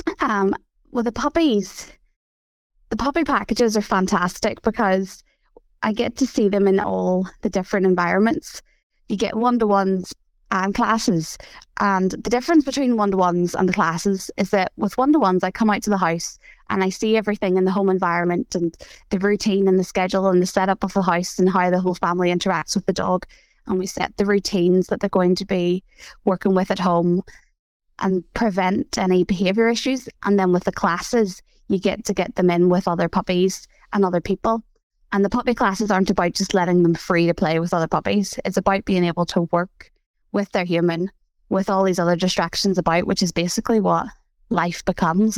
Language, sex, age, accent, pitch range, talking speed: English, female, 20-39, British, 180-210 Hz, 190 wpm